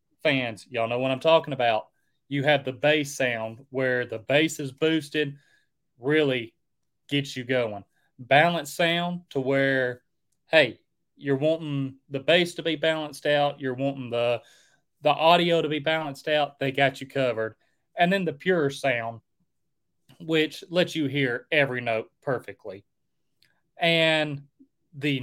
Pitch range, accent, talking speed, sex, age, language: 125-155 Hz, American, 145 wpm, male, 30-49, English